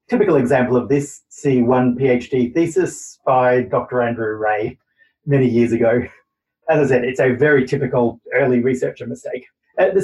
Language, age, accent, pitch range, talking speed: English, 30-49, Australian, 125-200 Hz, 155 wpm